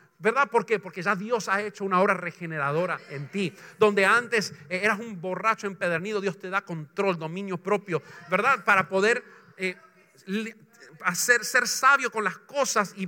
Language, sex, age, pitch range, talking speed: English, male, 50-69, 175-235 Hz, 160 wpm